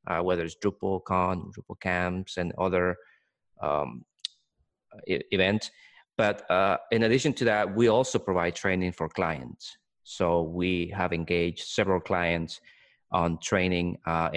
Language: English